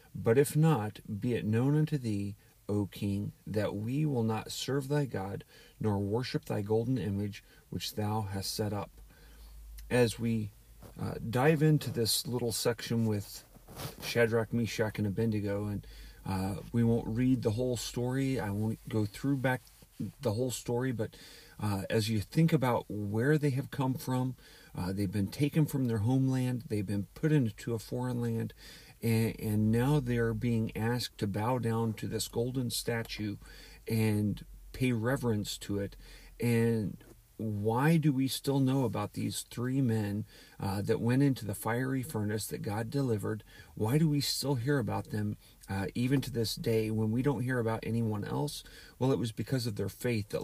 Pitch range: 105-130 Hz